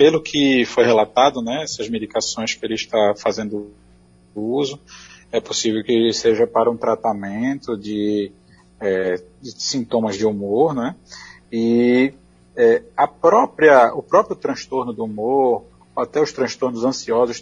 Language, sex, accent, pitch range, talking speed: Portuguese, male, Brazilian, 110-150 Hz, 135 wpm